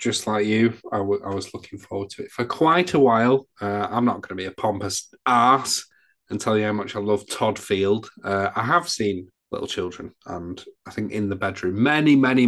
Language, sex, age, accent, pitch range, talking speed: English, male, 30-49, British, 100-130 Hz, 225 wpm